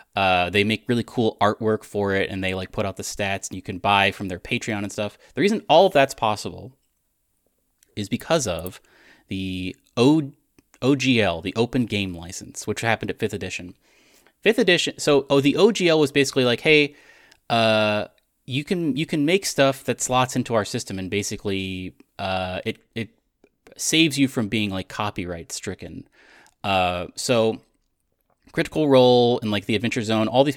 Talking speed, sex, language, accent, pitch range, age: 175 wpm, male, English, American, 95-130 Hz, 30-49